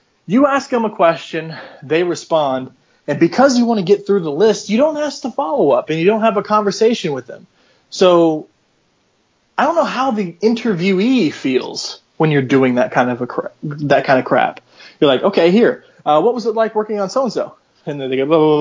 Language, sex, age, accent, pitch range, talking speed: English, male, 20-39, American, 150-230 Hz, 230 wpm